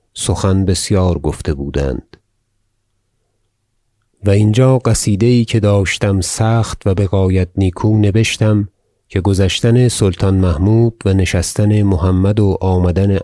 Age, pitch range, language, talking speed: 40-59, 90-110 Hz, Persian, 115 wpm